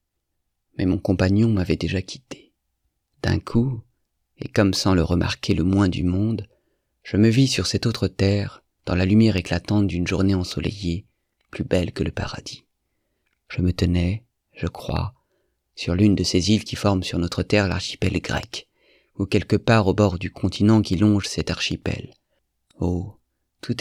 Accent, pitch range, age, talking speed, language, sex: French, 90-110 Hz, 30-49, 165 wpm, French, male